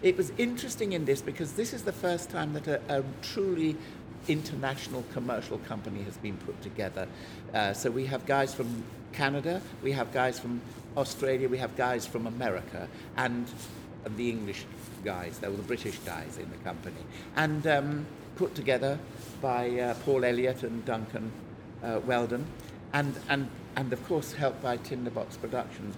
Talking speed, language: 165 wpm, English